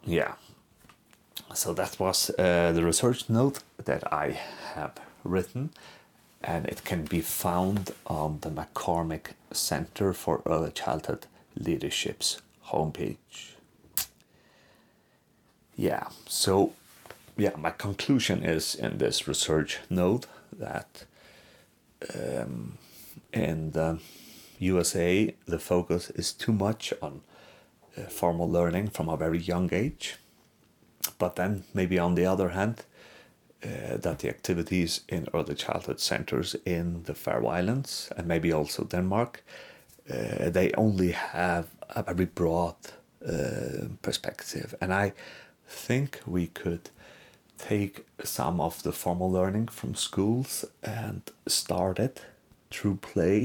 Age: 40-59